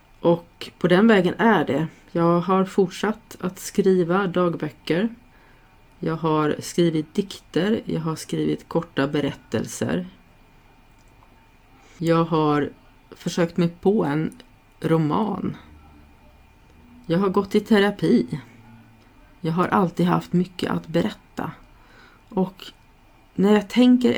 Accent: native